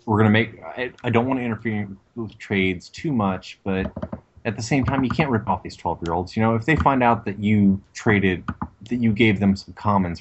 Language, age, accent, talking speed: English, 20-39, American, 255 wpm